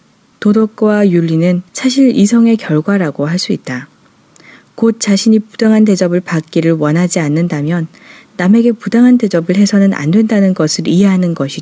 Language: Korean